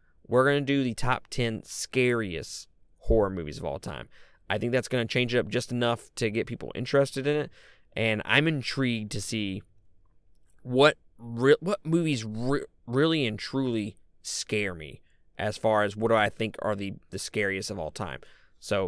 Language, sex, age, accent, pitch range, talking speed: English, male, 20-39, American, 100-125 Hz, 190 wpm